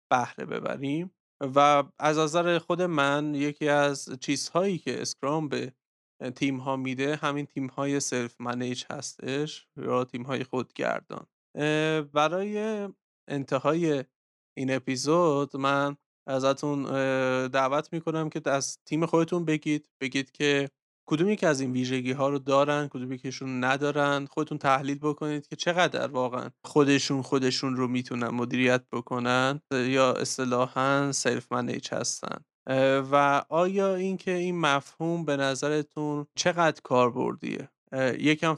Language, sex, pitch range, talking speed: Persian, male, 130-150 Hz, 125 wpm